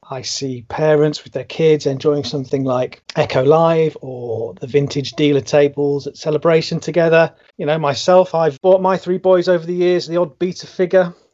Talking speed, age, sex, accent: 180 wpm, 30-49, male, British